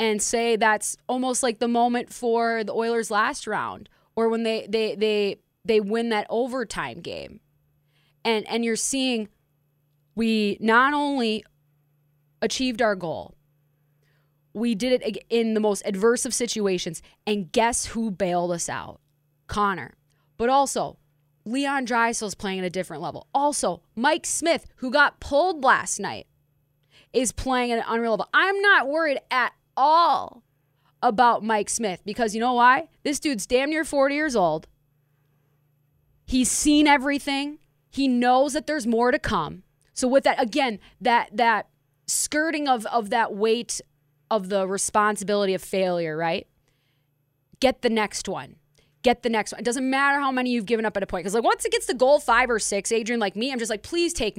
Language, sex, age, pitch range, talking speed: English, female, 20-39, 170-250 Hz, 170 wpm